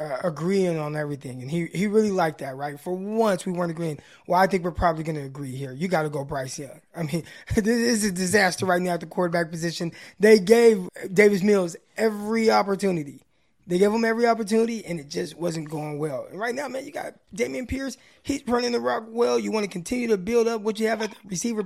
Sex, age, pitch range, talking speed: male, 20-39, 165-210 Hz, 240 wpm